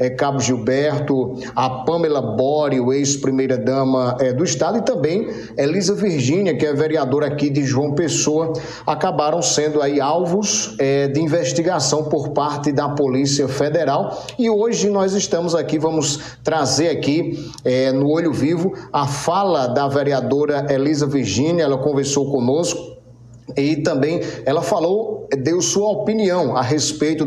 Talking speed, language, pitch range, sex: 130 wpm, Portuguese, 135-155 Hz, male